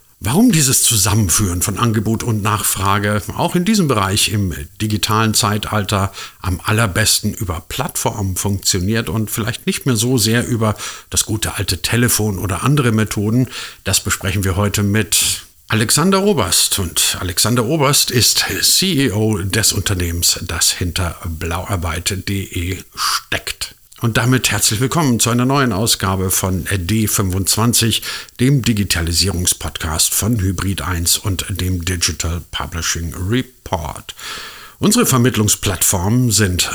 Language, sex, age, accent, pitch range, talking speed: German, male, 50-69, German, 95-115 Hz, 120 wpm